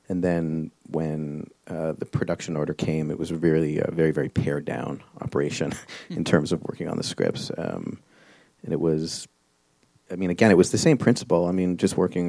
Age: 30-49